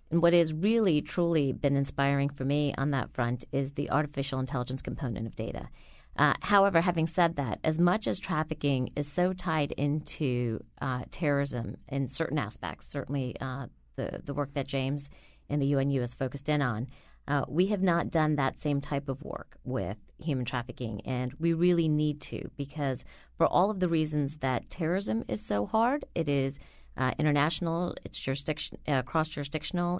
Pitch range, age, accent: 125-160 Hz, 40-59, American